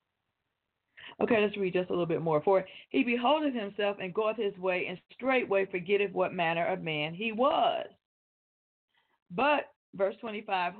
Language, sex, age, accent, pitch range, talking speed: English, female, 40-59, American, 210-285 Hz, 155 wpm